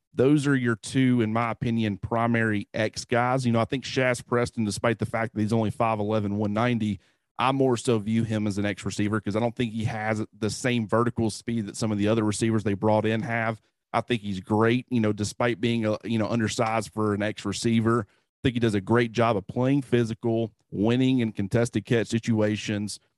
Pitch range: 110-120 Hz